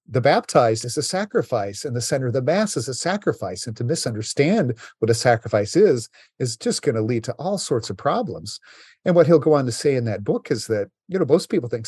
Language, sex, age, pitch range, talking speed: English, male, 50-69, 105-140 Hz, 240 wpm